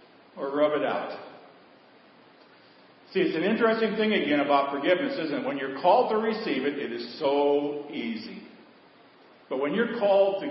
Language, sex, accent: English, male, American